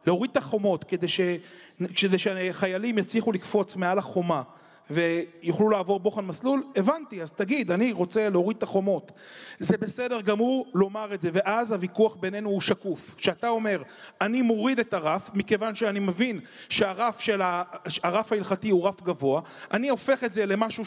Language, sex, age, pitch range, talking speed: Hebrew, male, 30-49, 190-230 Hz, 160 wpm